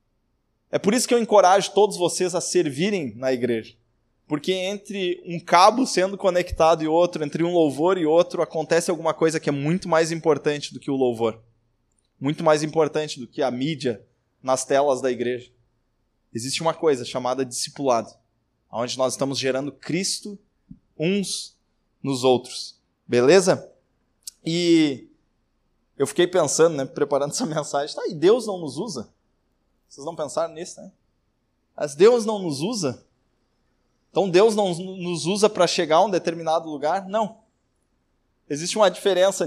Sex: male